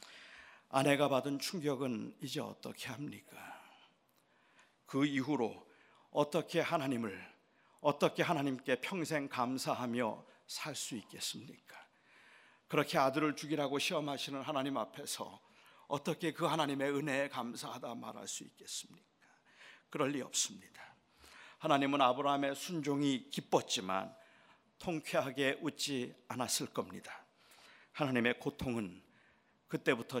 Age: 50-69